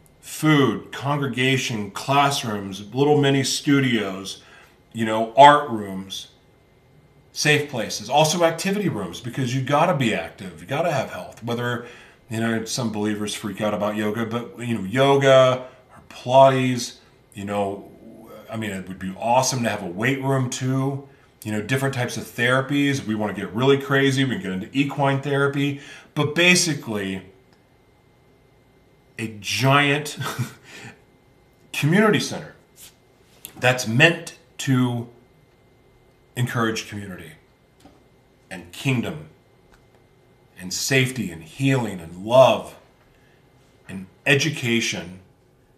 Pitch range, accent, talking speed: 110-135 Hz, American, 125 wpm